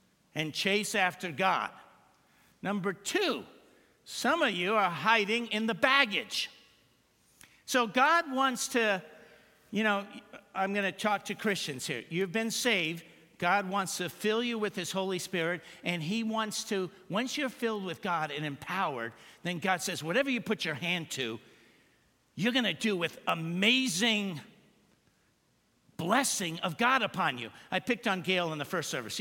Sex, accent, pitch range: male, American, 185-235 Hz